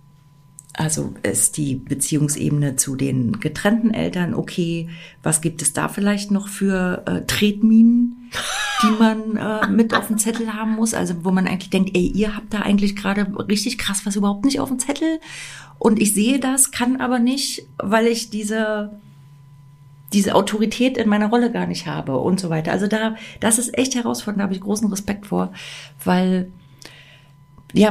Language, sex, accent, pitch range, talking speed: German, female, German, 155-210 Hz, 175 wpm